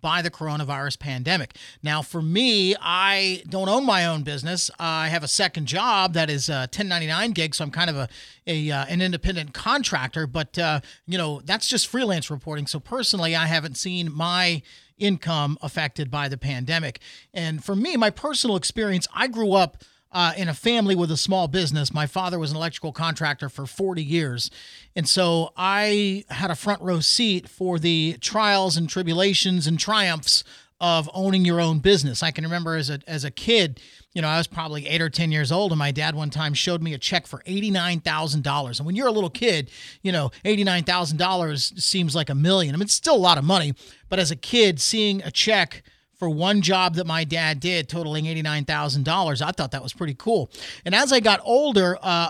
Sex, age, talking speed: male, 40-59, 200 wpm